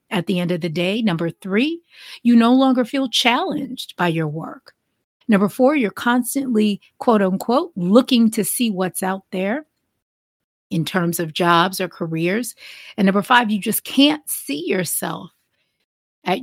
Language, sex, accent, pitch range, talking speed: English, female, American, 175-240 Hz, 155 wpm